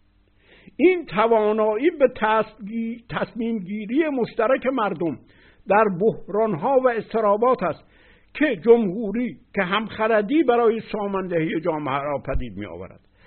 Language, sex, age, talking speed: Persian, male, 60-79, 110 wpm